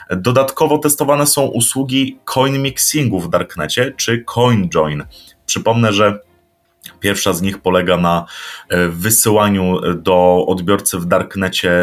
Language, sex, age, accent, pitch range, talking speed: Polish, male, 30-49, native, 95-120 Hz, 115 wpm